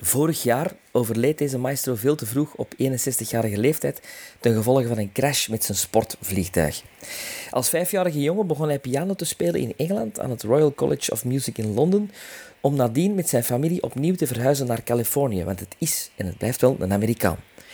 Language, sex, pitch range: Dutch, male, 115-155 Hz